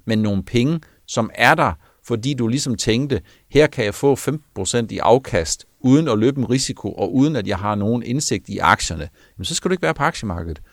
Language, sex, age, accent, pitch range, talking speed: Danish, male, 60-79, native, 95-125 Hz, 220 wpm